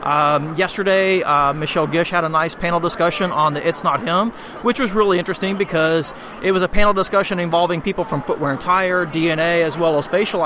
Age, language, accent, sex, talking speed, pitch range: 30-49, English, American, male, 205 wpm, 160-190 Hz